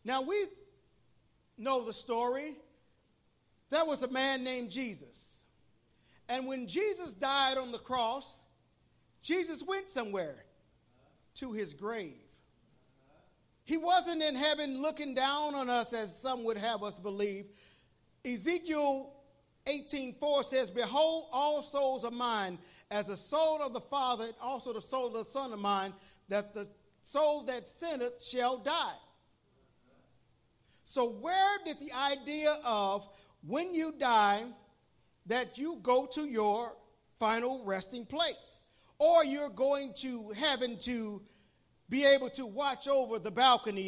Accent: American